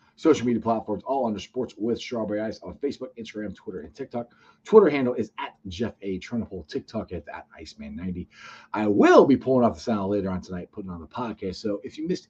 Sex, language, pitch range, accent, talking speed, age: male, English, 110-160 Hz, American, 225 wpm, 40-59